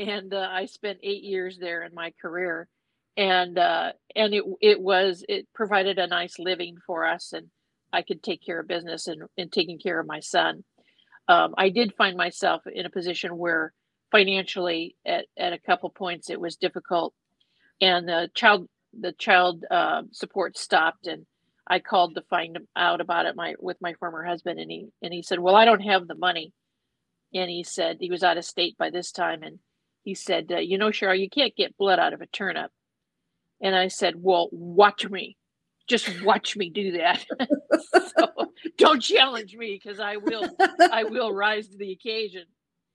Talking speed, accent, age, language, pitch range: 190 wpm, American, 50-69, English, 175-205 Hz